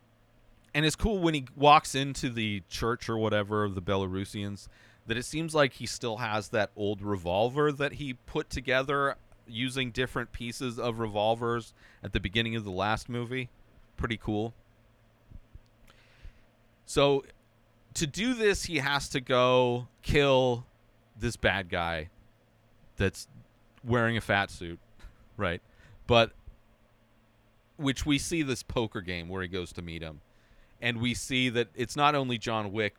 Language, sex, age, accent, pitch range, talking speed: English, male, 30-49, American, 110-135 Hz, 150 wpm